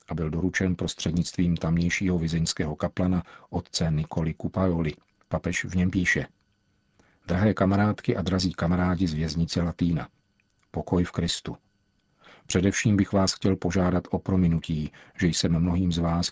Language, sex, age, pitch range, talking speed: Czech, male, 50-69, 85-95 Hz, 135 wpm